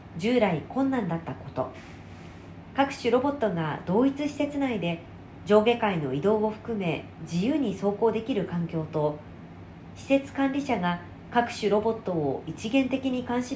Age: 40-59